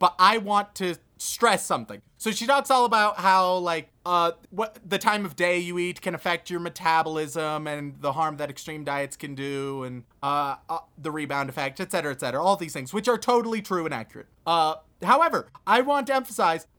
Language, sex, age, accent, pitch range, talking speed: English, male, 30-49, American, 170-230 Hz, 205 wpm